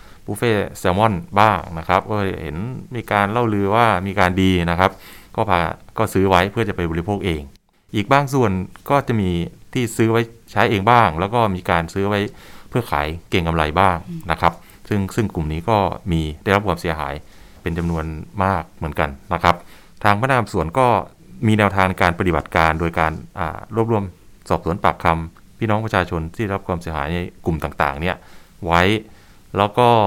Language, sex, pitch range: Thai, male, 85-105 Hz